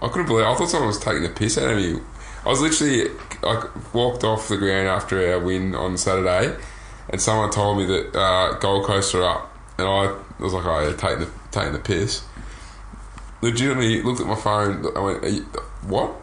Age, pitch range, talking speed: 20-39, 95-110 Hz, 220 wpm